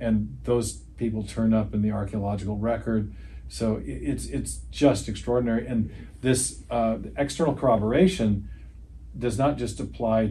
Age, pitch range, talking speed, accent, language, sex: 40-59, 100-115 Hz, 135 wpm, American, English, male